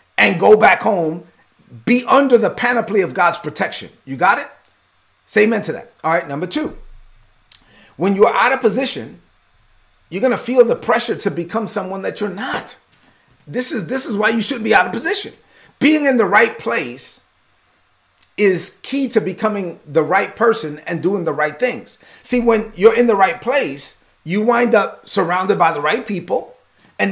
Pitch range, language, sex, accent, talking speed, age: 180-240 Hz, English, male, American, 185 wpm, 40-59